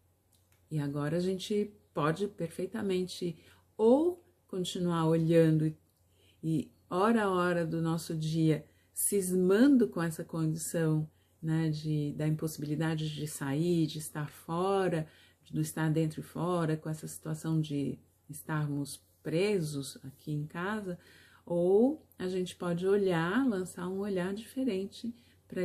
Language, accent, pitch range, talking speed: Portuguese, Brazilian, 155-190 Hz, 125 wpm